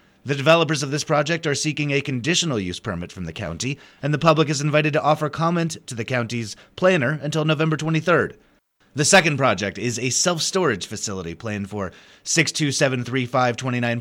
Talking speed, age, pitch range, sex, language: 165 wpm, 30-49, 120-165 Hz, male, English